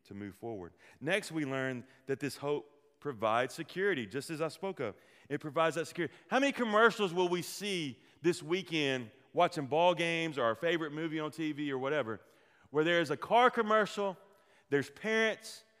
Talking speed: 170 wpm